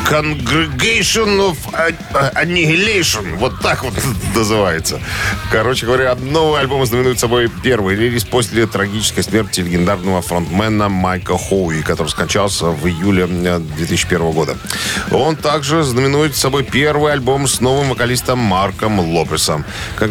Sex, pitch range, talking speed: male, 95-120 Hz, 120 wpm